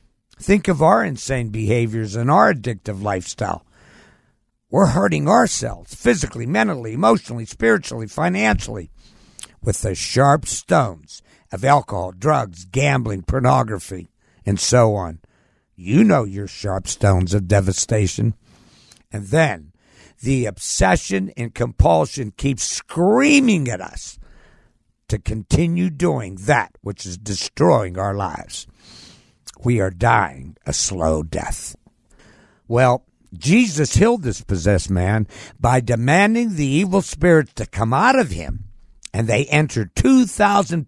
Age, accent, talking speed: 60-79, American, 120 wpm